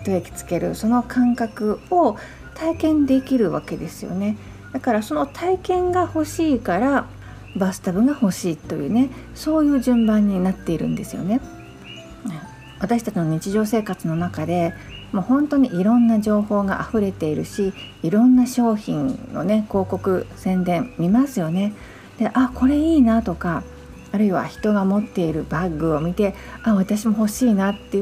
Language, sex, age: Japanese, female, 40-59